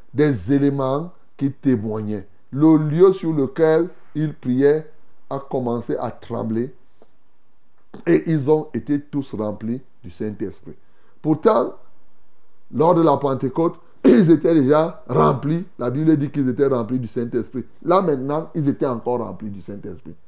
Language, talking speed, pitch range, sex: French, 140 wpm, 125-155 Hz, male